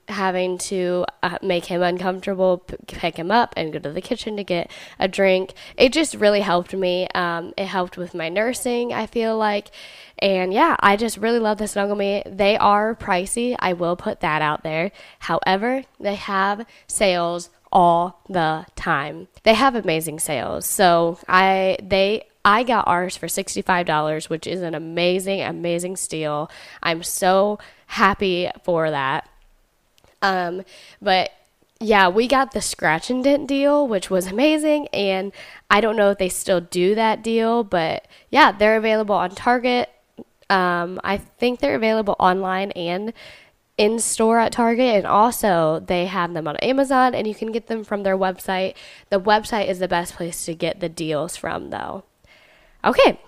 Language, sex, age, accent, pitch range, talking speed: English, female, 20-39, American, 175-220 Hz, 165 wpm